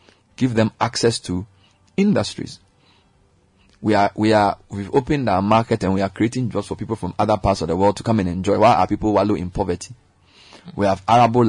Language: English